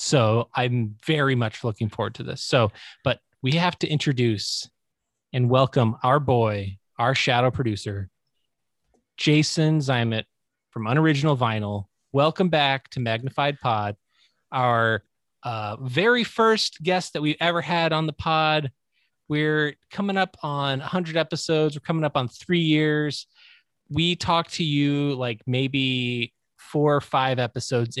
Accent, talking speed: American, 140 wpm